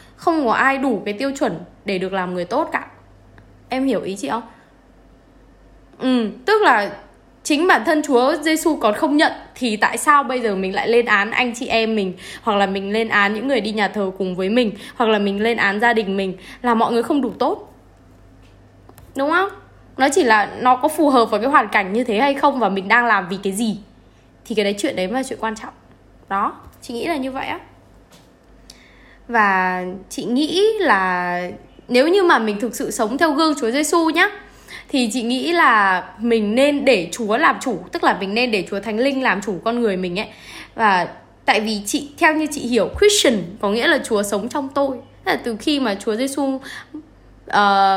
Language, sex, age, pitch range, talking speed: Vietnamese, female, 10-29, 205-280 Hz, 215 wpm